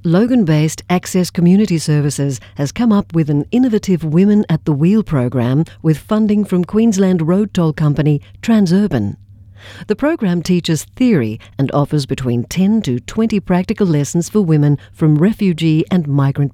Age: 50-69